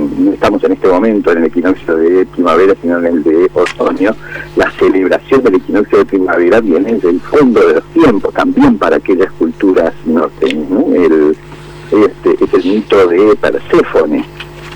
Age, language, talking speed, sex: 60-79, Spanish, 175 wpm, male